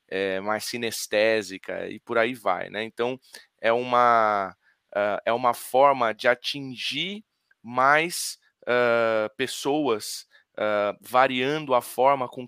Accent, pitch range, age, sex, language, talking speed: Brazilian, 105-125 Hz, 20-39, male, Portuguese, 115 wpm